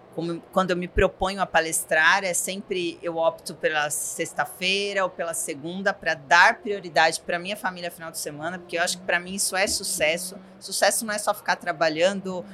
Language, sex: Portuguese, female